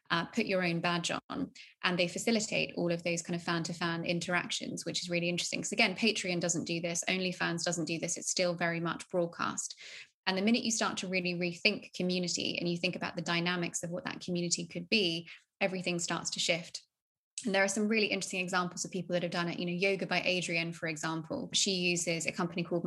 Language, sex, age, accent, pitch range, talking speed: English, female, 20-39, British, 170-185 Hz, 230 wpm